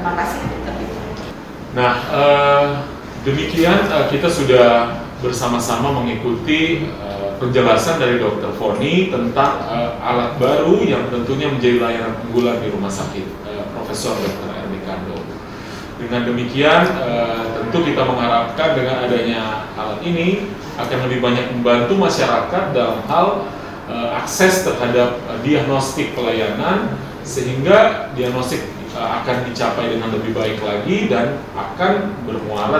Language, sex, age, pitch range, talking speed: Indonesian, male, 30-49, 115-145 Hz, 120 wpm